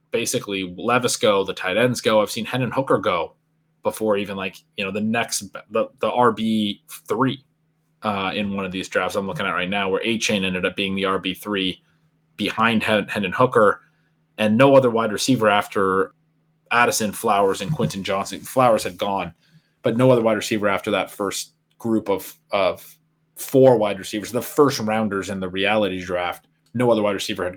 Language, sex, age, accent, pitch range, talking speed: English, male, 30-49, American, 100-140 Hz, 185 wpm